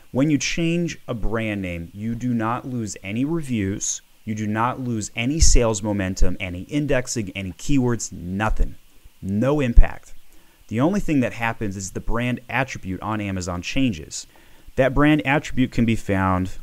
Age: 30-49